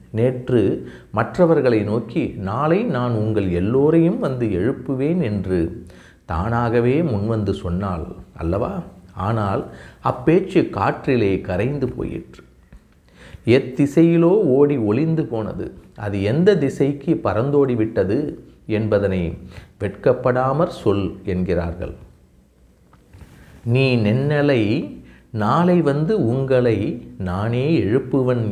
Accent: native